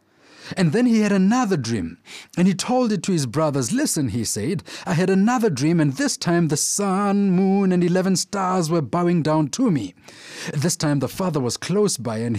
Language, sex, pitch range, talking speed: English, male, 140-190 Hz, 205 wpm